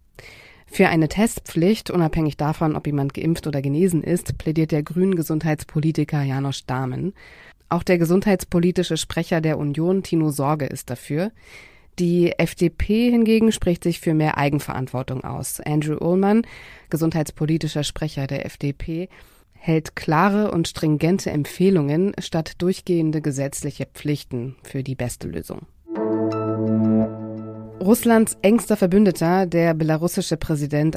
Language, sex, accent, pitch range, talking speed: German, female, German, 145-175 Hz, 120 wpm